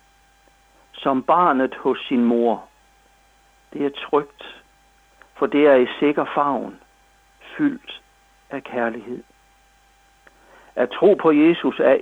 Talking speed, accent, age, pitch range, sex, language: 110 wpm, native, 60-79, 125-185 Hz, male, Danish